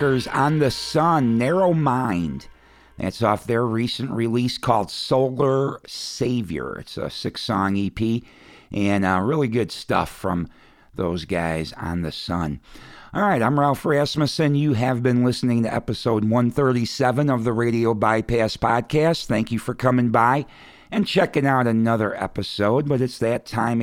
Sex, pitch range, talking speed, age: male, 110-140 Hz, 150 wpm, 60-79